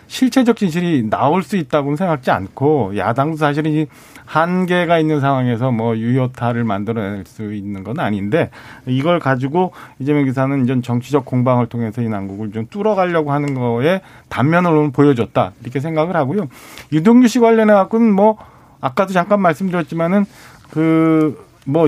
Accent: native